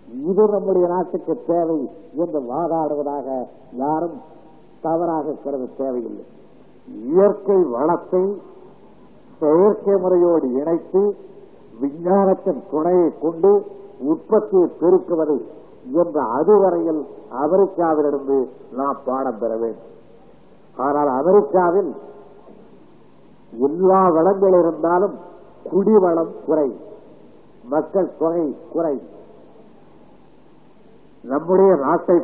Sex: male